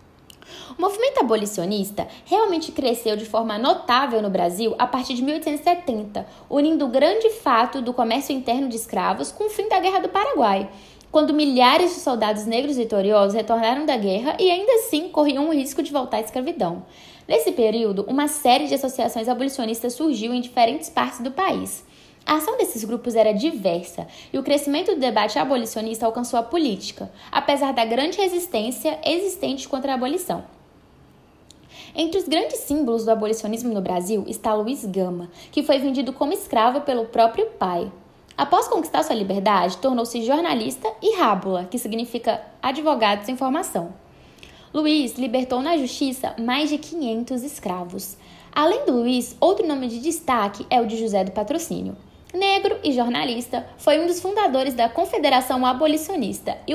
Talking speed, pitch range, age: 160 wpm, 230-315 Hz, 10-29